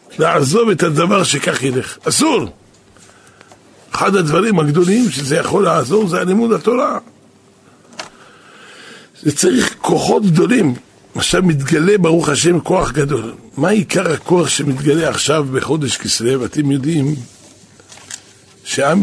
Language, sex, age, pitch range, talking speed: Hebrew, male, 60-79, 120-160 Hz, 110 wpm